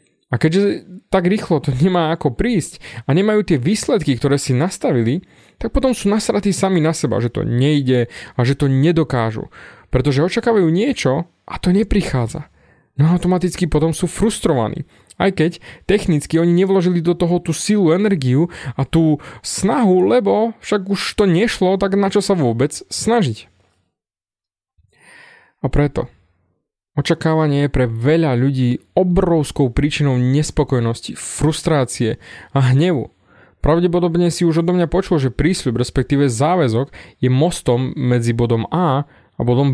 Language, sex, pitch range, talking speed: Slovak, male, 130-180 Hz, 140 wpm